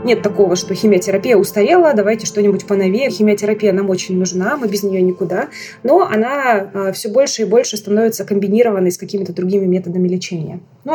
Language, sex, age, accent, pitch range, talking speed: Russian, female, 20-39, native, 195-240 Hz, 165 wpm